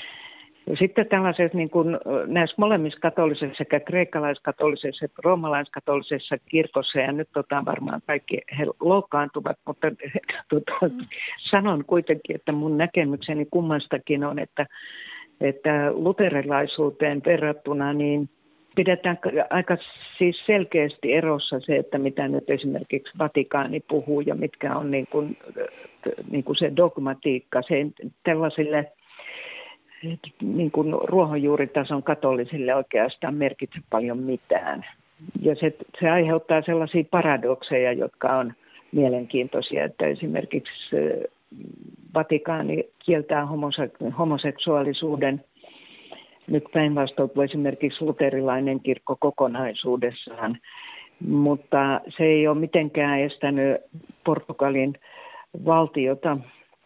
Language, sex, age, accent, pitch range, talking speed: Finnish, female, 50-69, native, 140-165 Hz, 95 wpm